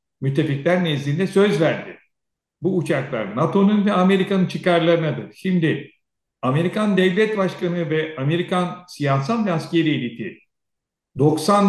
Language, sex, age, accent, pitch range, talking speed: Turkish, male, 60-79, native, 155-200 Hz, 110 wpm